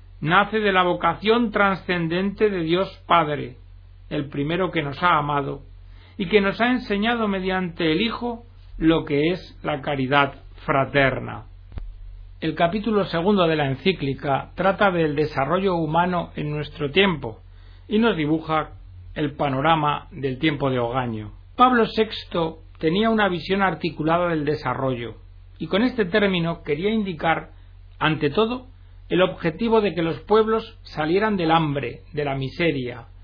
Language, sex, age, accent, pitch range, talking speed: Spanish, male, 60-79, Spanish, 135-195 Hz, 140 wpm